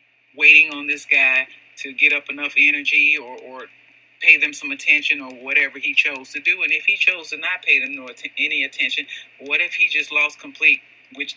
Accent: American